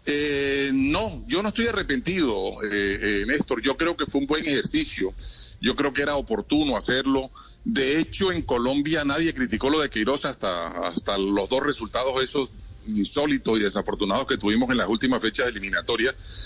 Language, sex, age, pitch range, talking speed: Spanish, male, 40-59, 115-150 Hz, 170 wpm